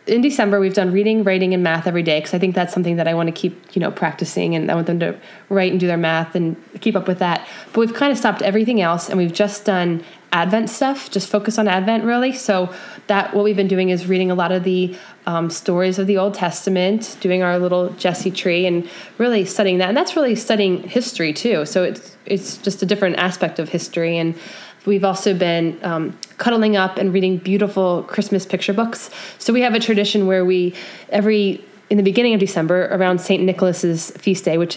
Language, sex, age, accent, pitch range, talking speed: English, female, 20-39, American, 180-205 Hz, 225 wpm